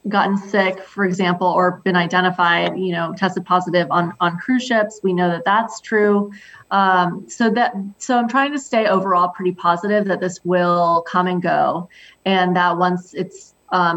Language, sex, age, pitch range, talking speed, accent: English, female, 20-39, 175-200 Hz, 180 wpm, American